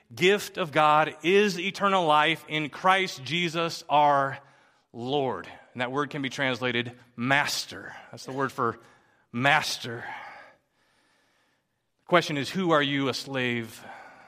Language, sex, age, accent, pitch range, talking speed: English, male, 40-59, American, 115-140 Hz, 130 wpm